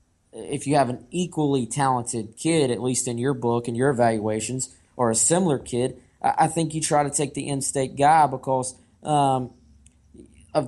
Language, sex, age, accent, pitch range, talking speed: English, male, 20-39, American, 120-145 Hz, 175 wpm